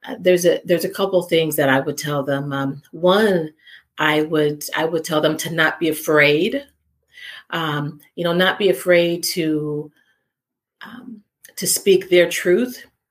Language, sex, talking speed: English, female, 160 wpm